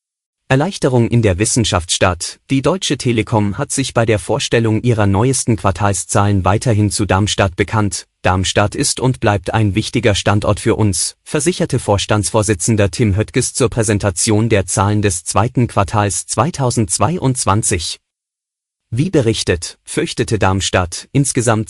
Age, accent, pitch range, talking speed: 30-49, German, 100-120 Hz, 125 wpm